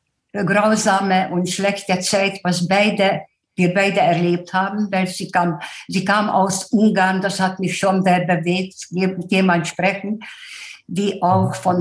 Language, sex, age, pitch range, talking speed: German, female, 60-79, 180-225 Hz, 140 wpm